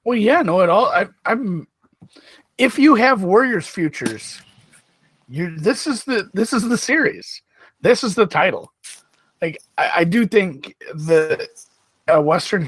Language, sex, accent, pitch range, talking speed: English, male, American, 120-170 Hz, 150 wpm